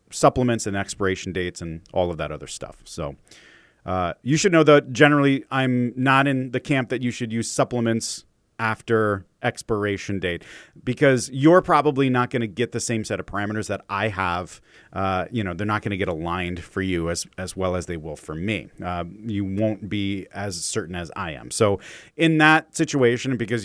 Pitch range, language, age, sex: 100-140 Hz, English, 30-49, male